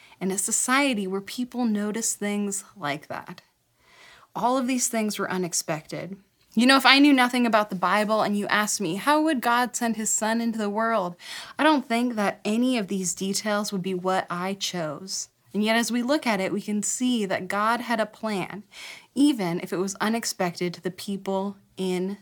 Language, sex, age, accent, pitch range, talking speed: English, female, 20-39, American, 195-240 Hz, 200 wpm